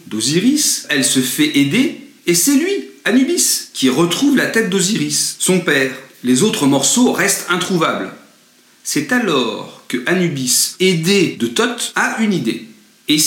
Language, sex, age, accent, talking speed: French, male, 40-59, French, 145 wpm